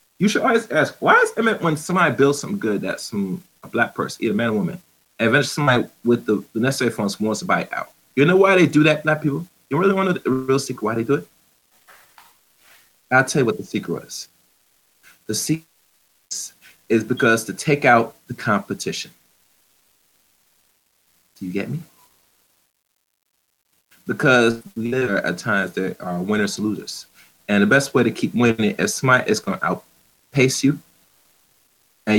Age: 30-49